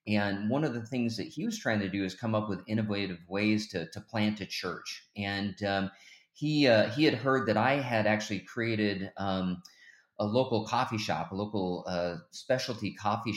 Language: English